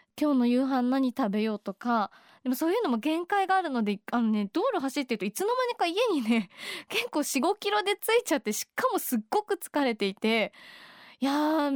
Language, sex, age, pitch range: Japanese, female, 20-39, 235-325 Hz